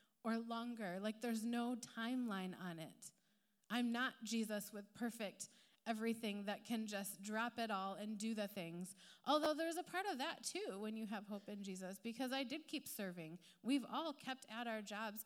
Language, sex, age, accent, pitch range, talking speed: English, female, 30-49, American, 200-235 Hz, 190 wpm